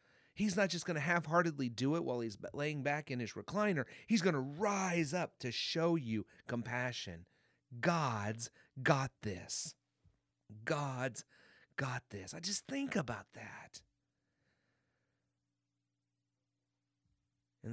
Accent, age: American, 30-49